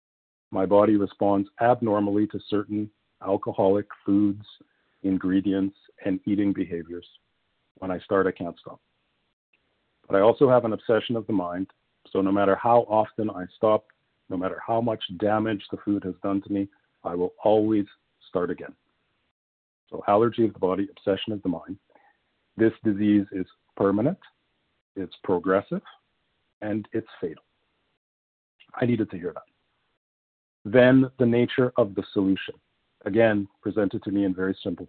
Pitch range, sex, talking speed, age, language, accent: 95-115 Hz, male, 150 wpm, 40-59, English, American